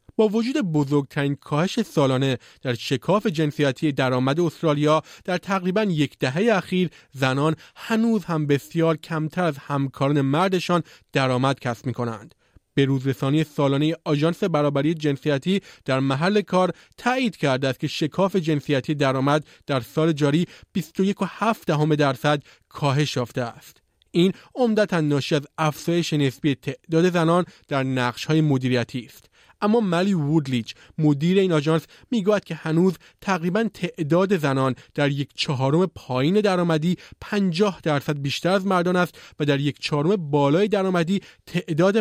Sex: male